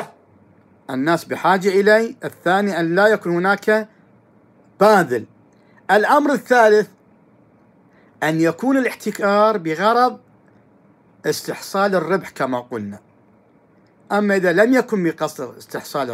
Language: Arabic